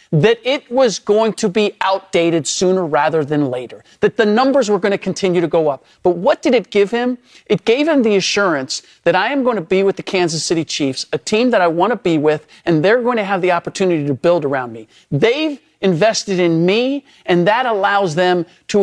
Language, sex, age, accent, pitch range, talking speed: English, male, 40-59, American, 180-260 Hz, 225 wpm